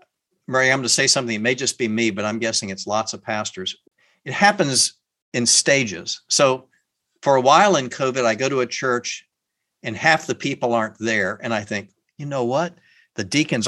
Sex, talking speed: male, 205 wpm